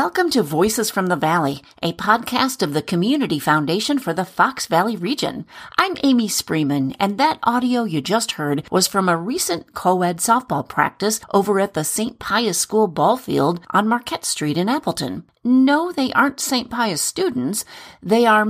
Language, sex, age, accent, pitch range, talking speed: English, female, 40-59, American, 155-235 Hz, 175 wpm